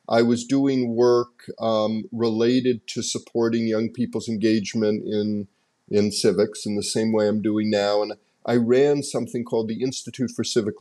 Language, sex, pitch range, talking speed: English, male, 110-140 Hz, 165 wpm